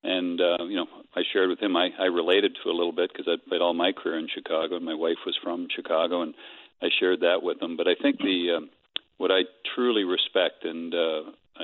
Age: 40-59